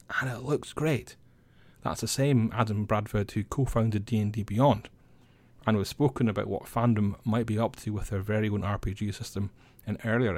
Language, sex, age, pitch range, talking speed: English, male, 30-49, 105-125 Hz, 180 wpm